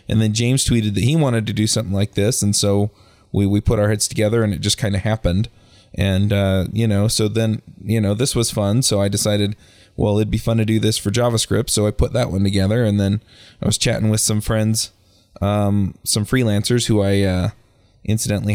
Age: 20-39